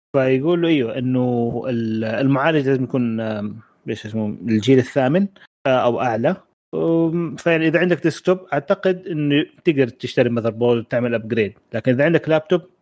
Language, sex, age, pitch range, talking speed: Arabic, male, 30-49, 120-155 Hz, 125 wpm